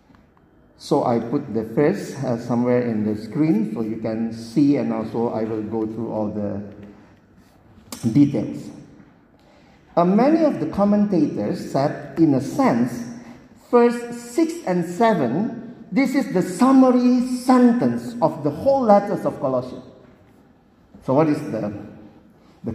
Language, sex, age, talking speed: Indonesian, male, 50-69, 135 wpm